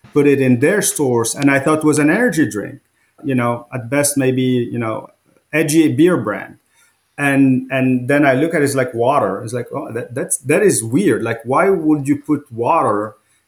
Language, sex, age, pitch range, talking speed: English, male, 40-59, 125-150 Hz, 210 wpm